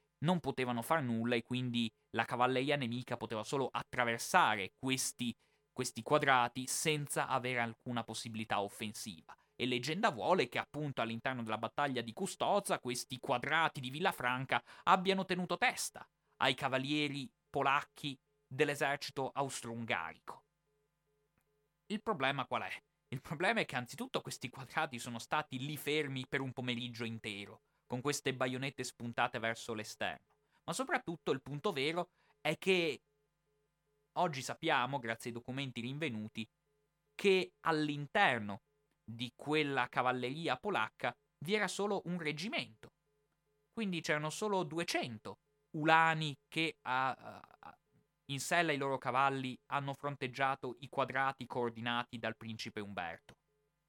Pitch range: 120-155 Hz